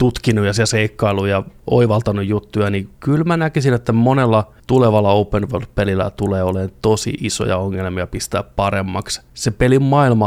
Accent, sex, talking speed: native, male, 150 wpm